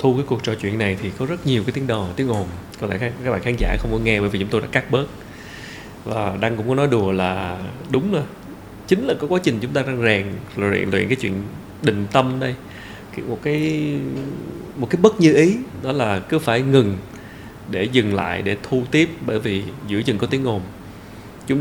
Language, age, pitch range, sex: Vietnamese, 20-39, 100-140 Hz, male